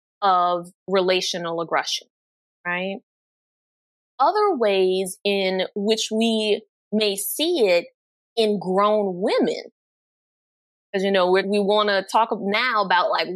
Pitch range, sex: 185-235 Hz, female